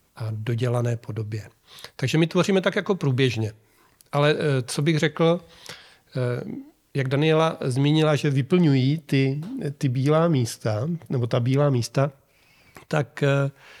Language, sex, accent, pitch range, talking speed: Czech, male, native, 125-150 Hz, 115 wpm